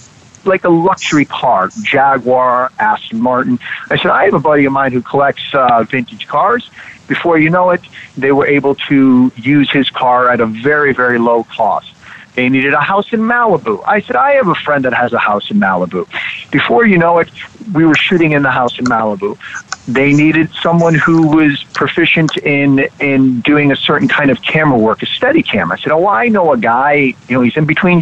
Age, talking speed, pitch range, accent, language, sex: 50-69, 210 wpm, 130-175 Hz, American, English, male